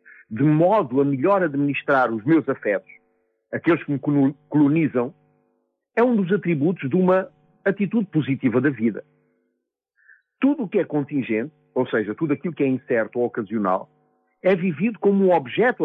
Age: 50-69